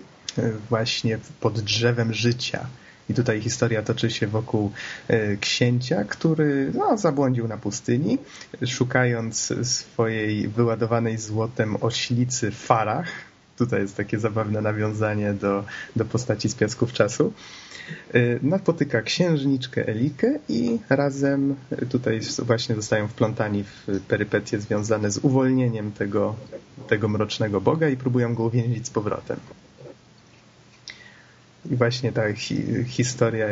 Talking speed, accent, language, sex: 110 wpm, native, Polish, male